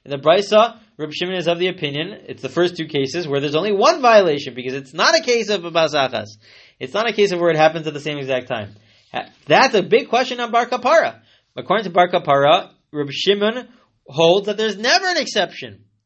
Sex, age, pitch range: male, 30-49, 140-210 Hz